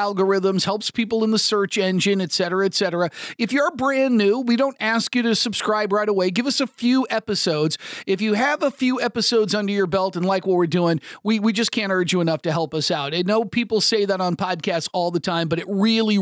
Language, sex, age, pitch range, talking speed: English, male, 40-59, 180-225 Hz, 245 wpm